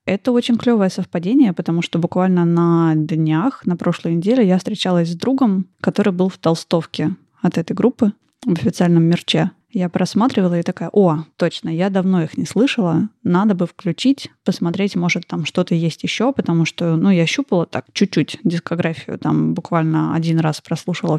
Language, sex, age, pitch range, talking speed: Russian, female, 20-39, 170-200 Hz, 165 wpm